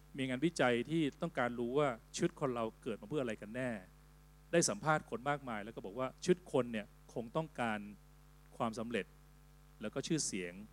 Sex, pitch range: male, 110-150 Hz